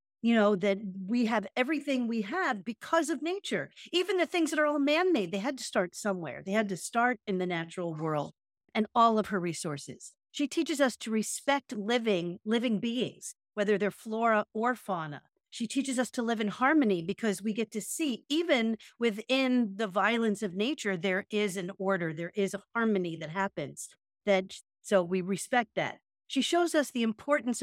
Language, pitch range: English, 195-250 Hz